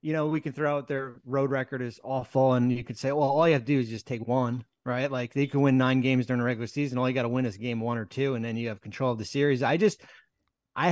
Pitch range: 125-145 Hz